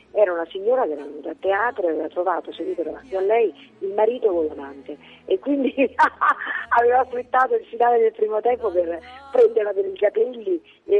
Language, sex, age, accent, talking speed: Italian, female, 40-59, native, 180 wpm